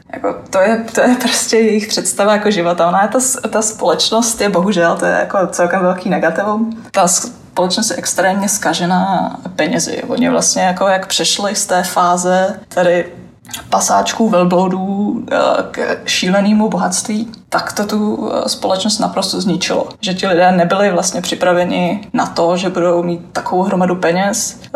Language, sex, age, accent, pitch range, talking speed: Czech, female, 20-39, native, 180-230 Hz, 155 wpm